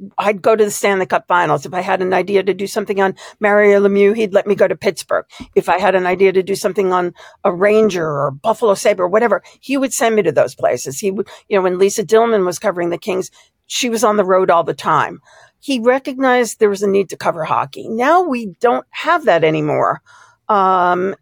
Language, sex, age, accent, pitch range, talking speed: English, female, 50-69, American, 180-235 Hz, 230 wpm